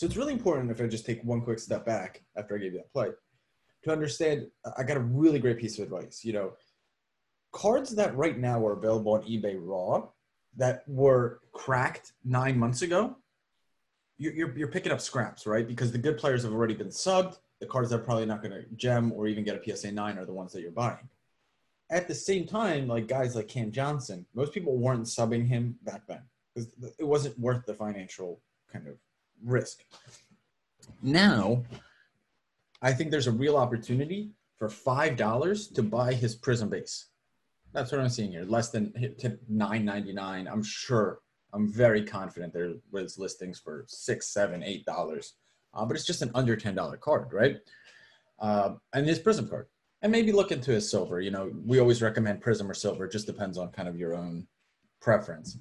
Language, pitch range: English, 105-140 Hz